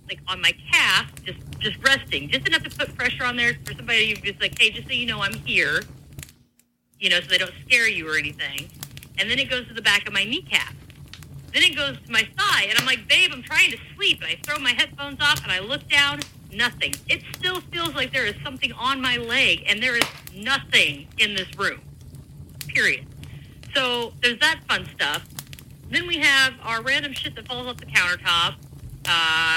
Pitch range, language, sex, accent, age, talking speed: 195-270 Hz, English, female, American, 30-49, 215 wpm